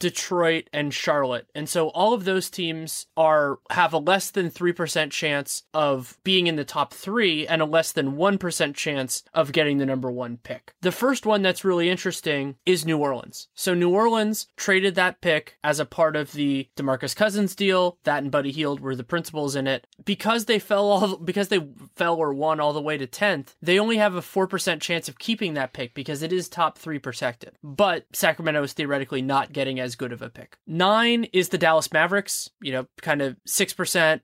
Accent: American